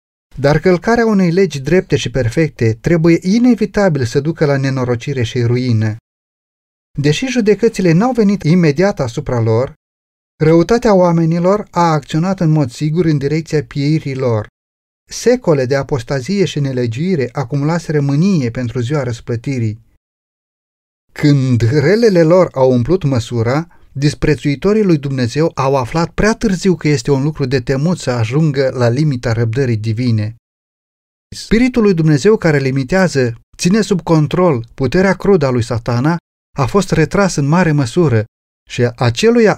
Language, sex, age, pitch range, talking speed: Romanian, male, 30-49, 125-175 Hz, 135 wpm